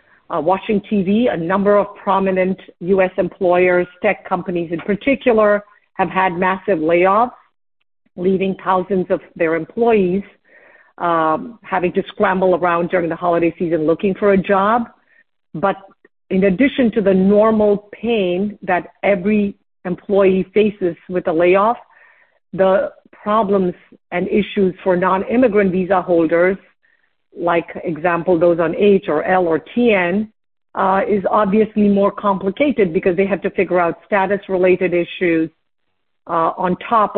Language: English